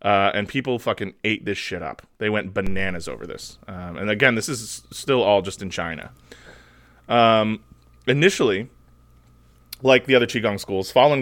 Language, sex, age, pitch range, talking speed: English, male, 20-39, 95-115 Hz, 165 wpm